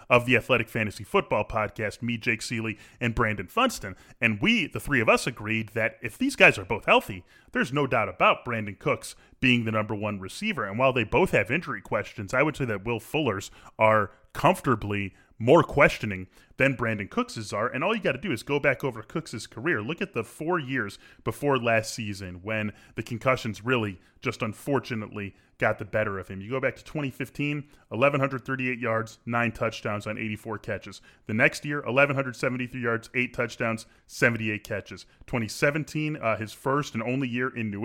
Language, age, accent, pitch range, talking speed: English, 20-39, American, 110-135 Hz, 190 wpm